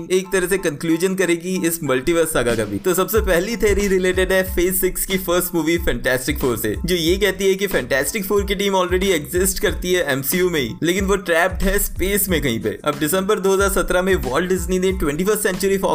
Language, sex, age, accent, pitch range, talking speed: Hindi, male, 20-39, native, 160-195 Hz, 55 wpm